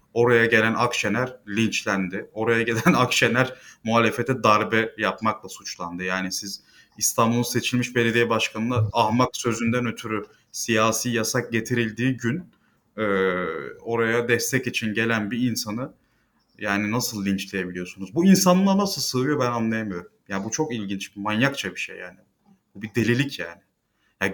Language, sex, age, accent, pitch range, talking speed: Turkish, male, 30-49, native, 110-130 Hz, 130 wpm